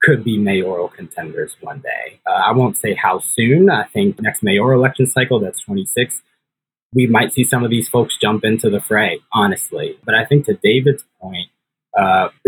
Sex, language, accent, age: male, English, American, 20-39